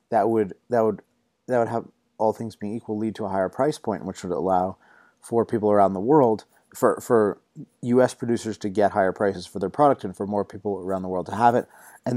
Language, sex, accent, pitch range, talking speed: English, male, American, 95-120 Hz, 230 wpm